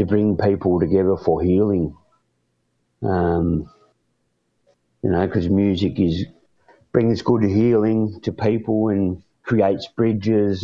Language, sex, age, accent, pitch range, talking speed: English, male, 50-69, Australian, 95-115 Hz, 105 wpm